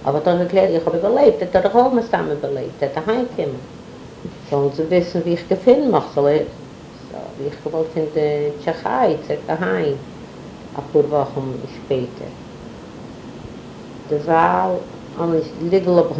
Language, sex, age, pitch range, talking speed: English, female, 50-69, 140-165 Hz, 120 wpm